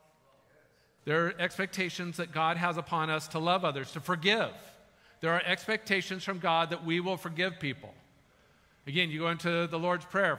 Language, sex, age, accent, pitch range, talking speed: English, male, 50-69, American, 165-205 Hz, 175 wpm